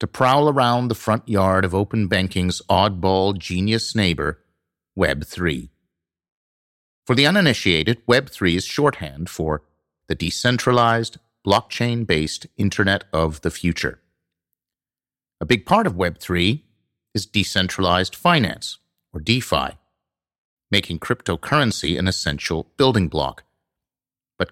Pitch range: 85-120 Hz